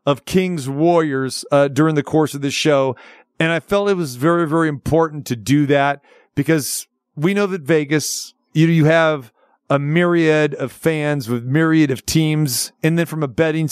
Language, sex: English, male